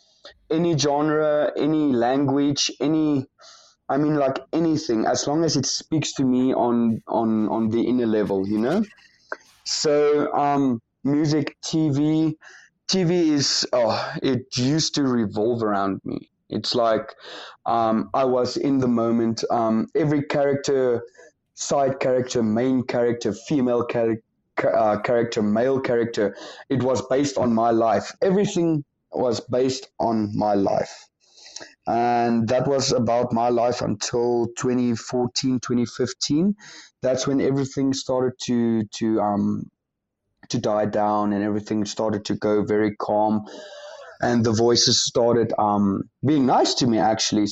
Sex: male